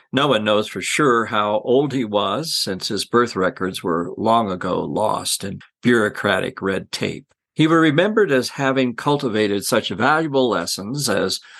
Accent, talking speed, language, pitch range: American, 160 wpm, English, 110-155 Hz